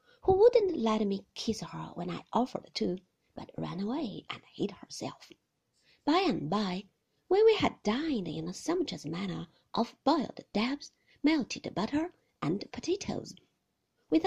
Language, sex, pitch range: Chinese, female, 185-280 Hz